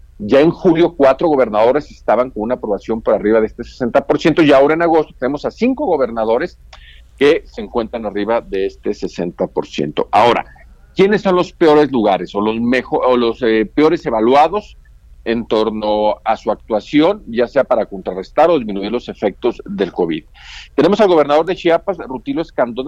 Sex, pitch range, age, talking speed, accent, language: male, 110-155 Hz, 50-69, 165 wpm, Mexican, Spanish